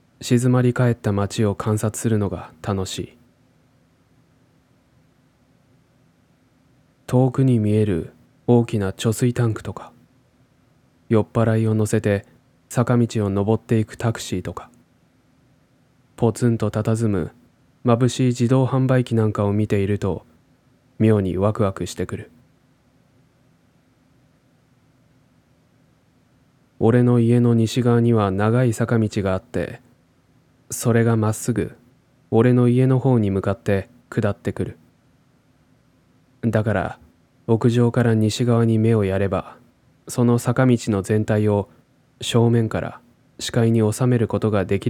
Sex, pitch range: male, 105-120 Hz